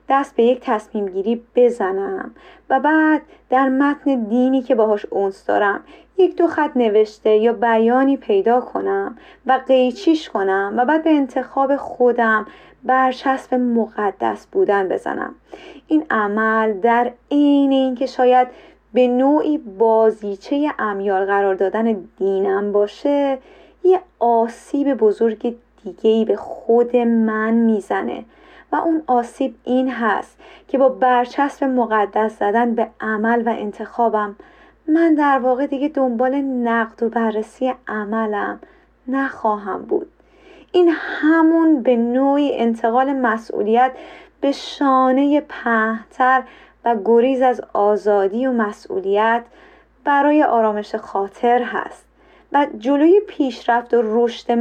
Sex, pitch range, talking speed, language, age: female, 225-280 Hz, 115 wpm, Persian, 30-49